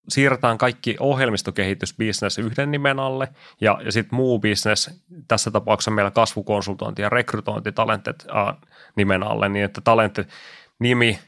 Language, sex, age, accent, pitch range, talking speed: Finnish, male, 20-39, native, 105-120 Hz, 115 wpm